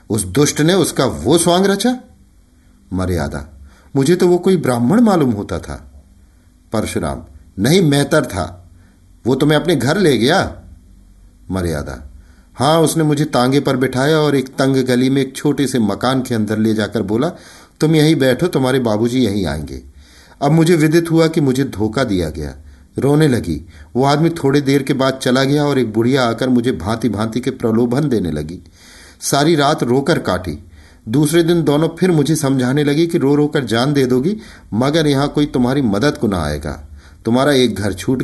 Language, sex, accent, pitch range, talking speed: Hindi, male, native, 90-145 Hz, 180 wpm